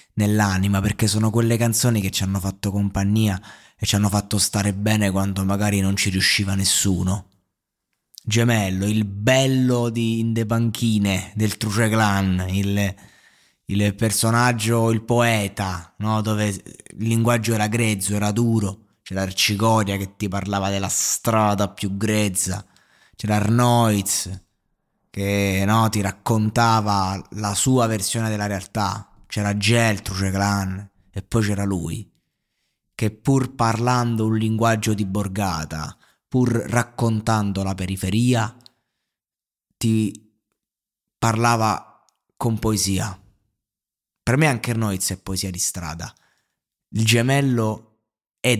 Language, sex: Italian, male